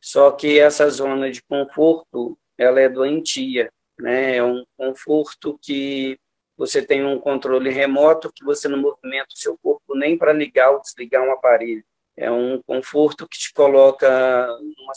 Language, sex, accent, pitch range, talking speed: Portuguese, male, Brazilian, 130-155 Hz, 160 wpm